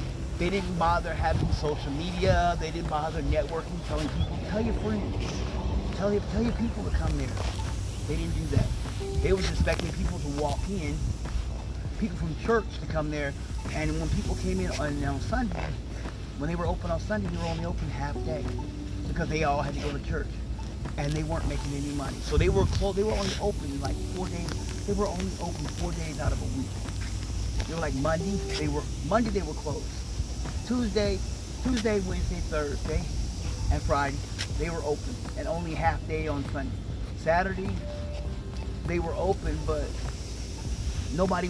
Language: English